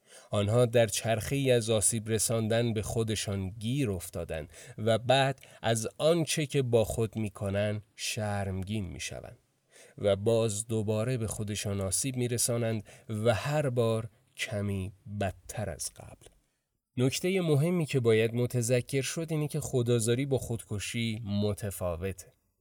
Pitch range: 100-130 Hz